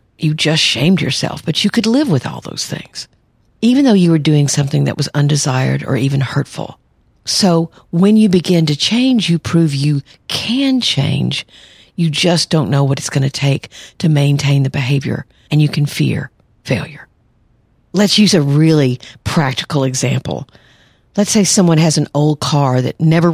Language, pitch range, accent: English, 135-175 Hz, American